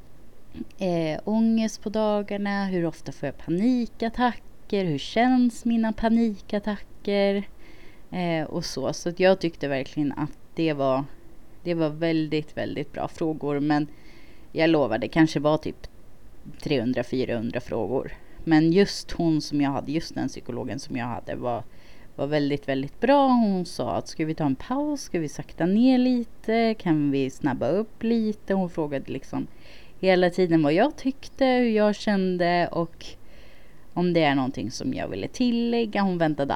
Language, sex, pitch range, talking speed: Swedish, female, 145-205 Hz, 150 wpm